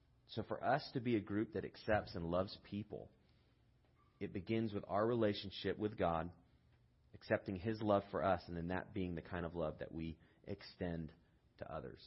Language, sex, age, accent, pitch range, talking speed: English, male, 30-49, American, 100-125 Hz, 185 wpm